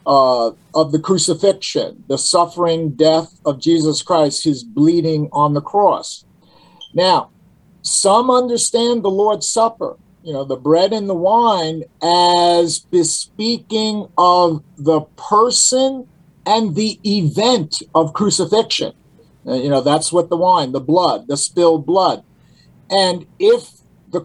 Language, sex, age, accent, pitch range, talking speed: English, male, 50-69, American, 165-220 Hz, 130 wpm